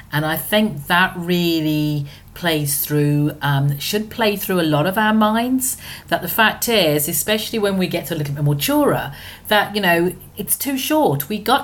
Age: 40-59